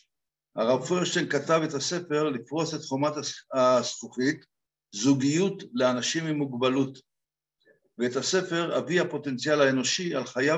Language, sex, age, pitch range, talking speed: Hebrew, male, 60-79, 135-170 Hz, 115 wpm